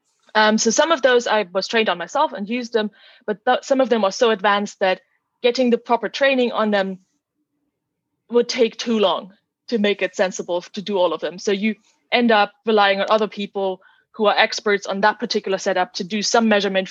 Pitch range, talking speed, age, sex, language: 190-225 Hz, 210 wpm, 20-39, female, English